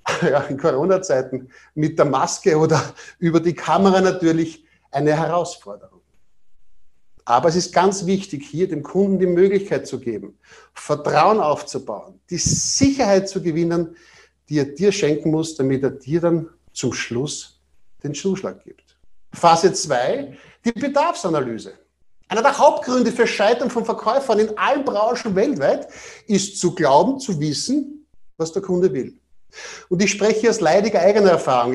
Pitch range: 155-215 Hz